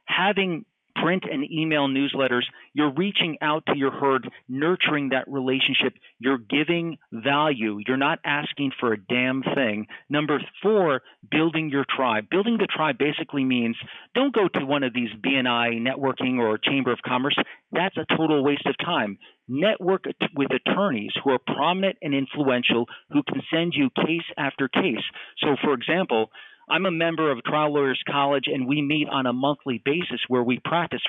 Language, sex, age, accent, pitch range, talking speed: English, male, 50-69, American, 130-160 Hz, 170 wpm